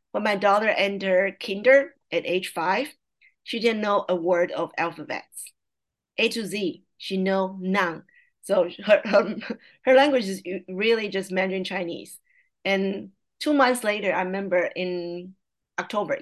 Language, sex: English, female